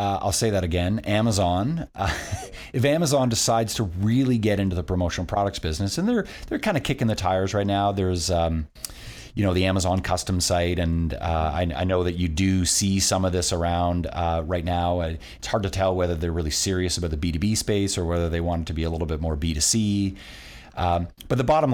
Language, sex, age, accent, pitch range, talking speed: English, male, 30-49, American, 85-110 Hz, 220 wpm